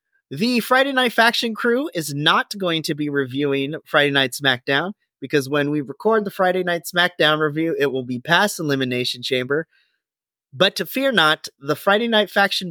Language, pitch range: English, 150-200 Hz